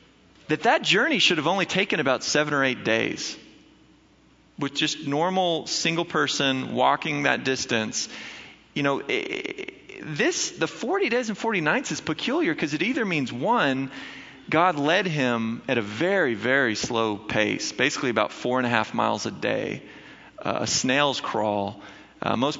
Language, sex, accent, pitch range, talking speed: English, male, American, 110-145 Hz, 165 wpm